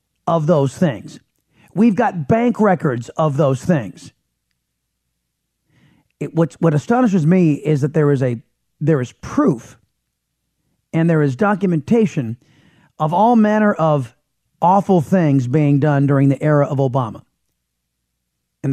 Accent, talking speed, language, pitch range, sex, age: American, 130 wpm, English, 115-175 Hz, male, 40-59